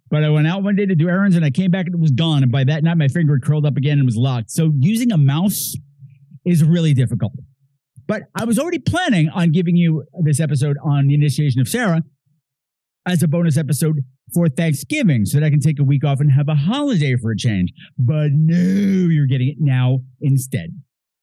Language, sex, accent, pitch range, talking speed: English, male, American, 140-190 Hz, 225 wpm